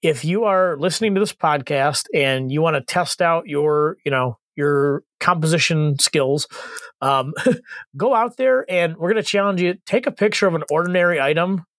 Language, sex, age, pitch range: English, male, 30-49, 140-175 Hz